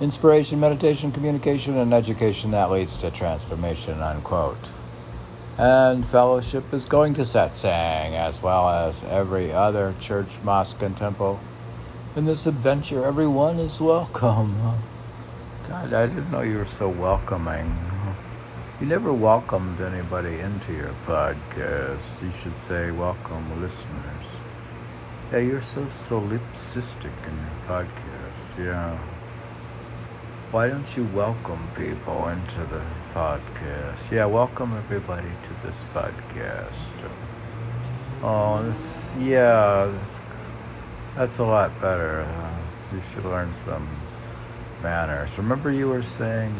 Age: 60-79